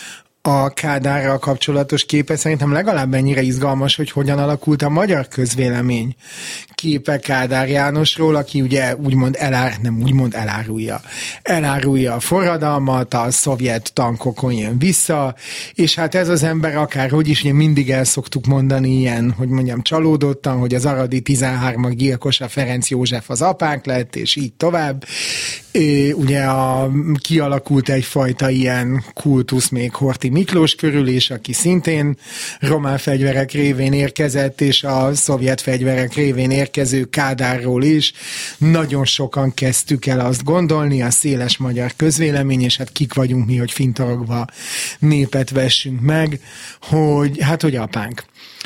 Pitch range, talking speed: 130-150 Hz, 130 wpm